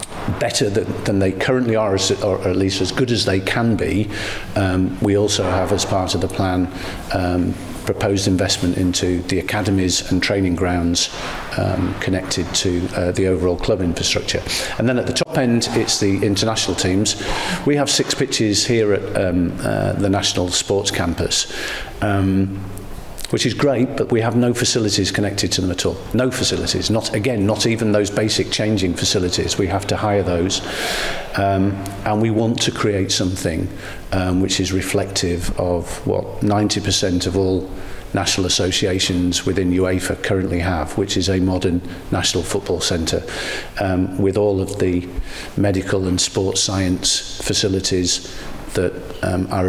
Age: 50-69